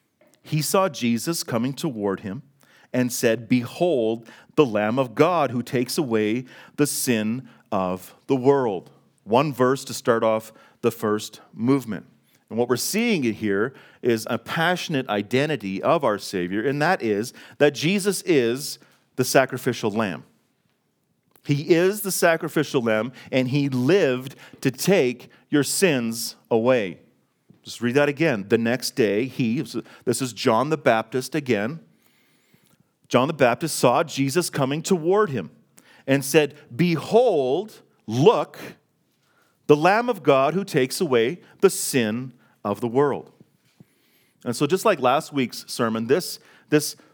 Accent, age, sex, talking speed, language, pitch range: American, 40-59, male, 140 wpm, English, 115-150 Hz